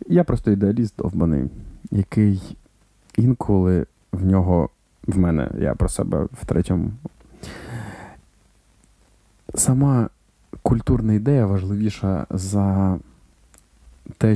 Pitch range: 95-110 Hz